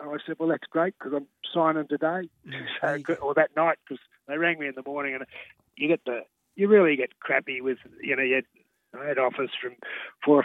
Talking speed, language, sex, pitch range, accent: 225 wpm, English, male, 135-160 Hz, Australian